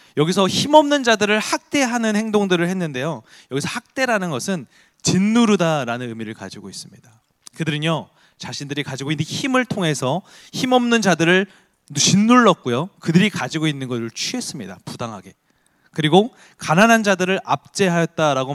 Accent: native